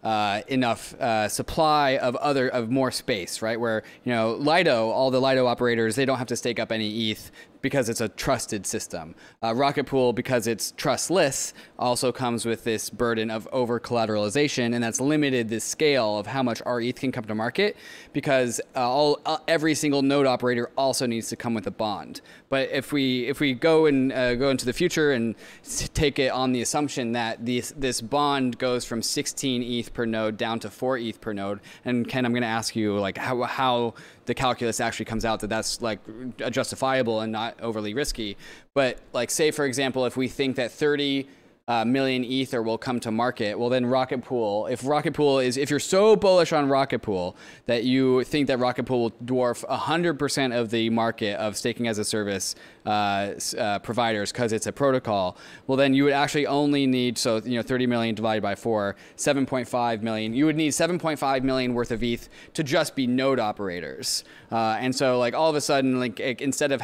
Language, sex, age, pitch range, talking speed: English, male, 20-39, 115-140 Hz, 210 wpm